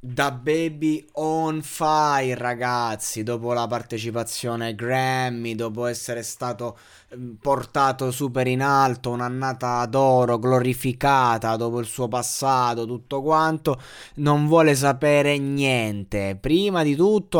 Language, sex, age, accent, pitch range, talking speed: Italian, male, 20-39, native, 120-150 Hz, 115 wpm